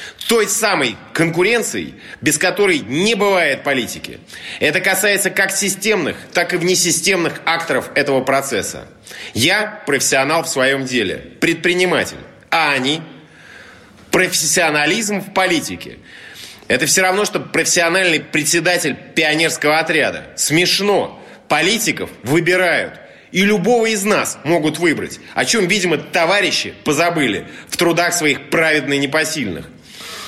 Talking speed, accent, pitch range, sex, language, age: 115 wpm, native, 155-195 Hz, male, Russian, 30-49